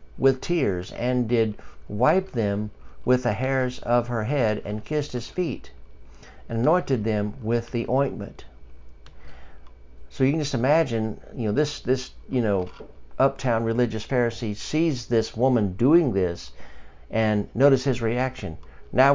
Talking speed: 145 wpm